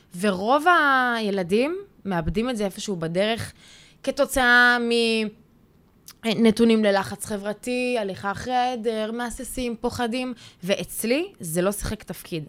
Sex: female